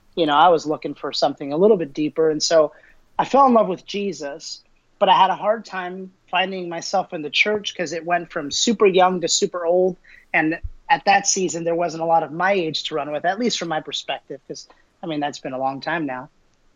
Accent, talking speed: American, 240 wpm